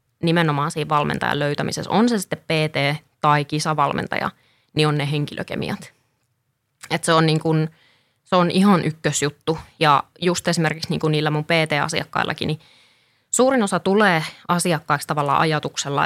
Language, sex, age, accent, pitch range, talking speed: Finnish, female, 20-39, native, 145-175 Hz, 130 wpm